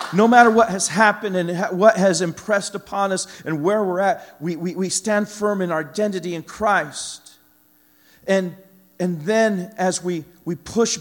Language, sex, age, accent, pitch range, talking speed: English, male, 40-59, American, 140-180 Hz, 175 wpm